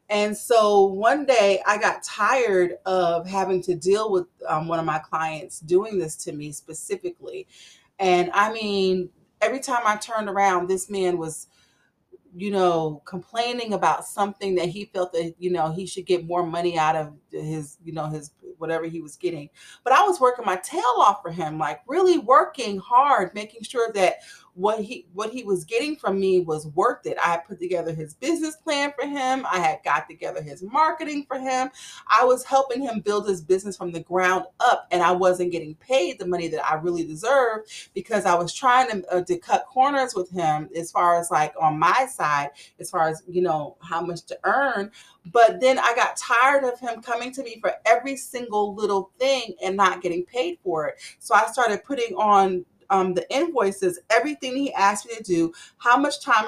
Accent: American